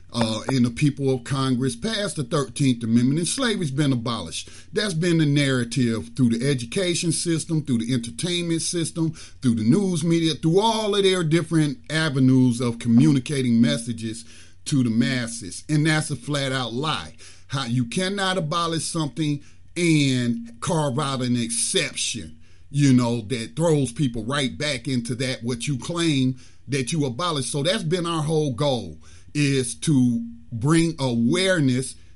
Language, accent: English, American